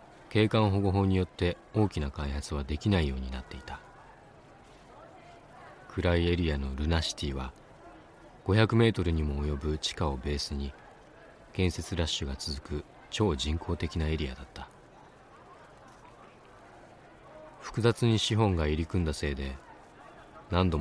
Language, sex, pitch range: Japanese, male, 75-95 Hz